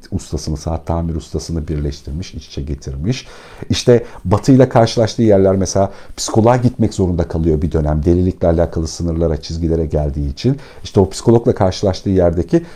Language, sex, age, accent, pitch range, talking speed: Turkish, male, 50-69, native, 90-125 Hz, 140 wpm